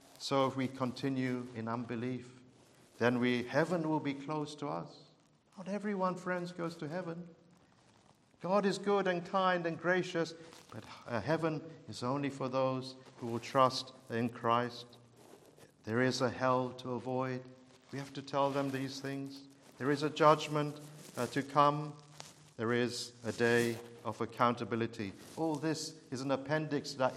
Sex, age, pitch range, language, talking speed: male, 50-69, 120-155 Hz, English, 155 wpm